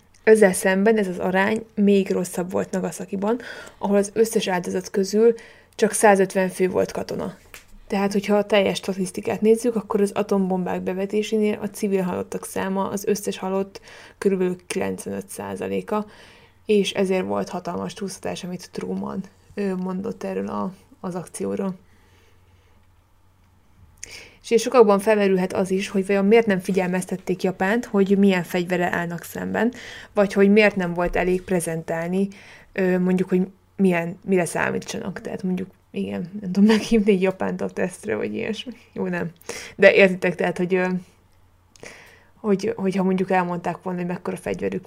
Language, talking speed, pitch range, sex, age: Hungarian, 140 wpm, 180-210 Hz, female, 20-39